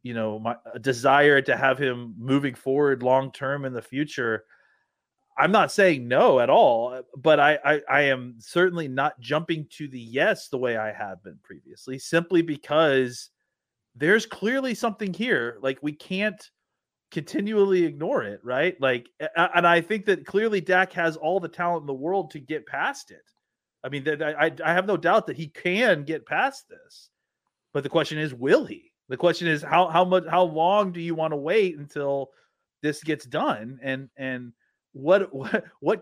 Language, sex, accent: English, male, American